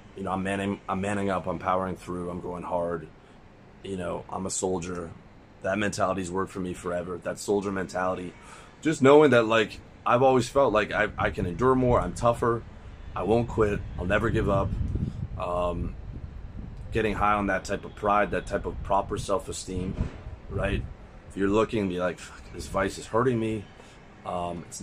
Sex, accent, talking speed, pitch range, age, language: male, American, 185 wpm, 90-105 Hz, 30-49, English